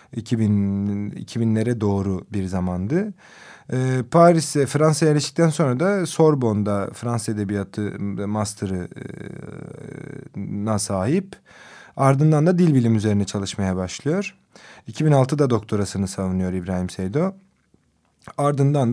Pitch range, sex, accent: 100-130 Hz, male, native